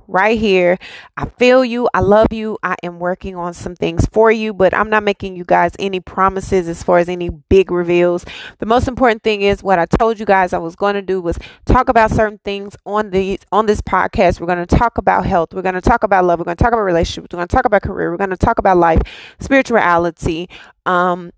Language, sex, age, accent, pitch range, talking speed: English, female, 20-39, American, 180-220 Hz, 245 wpm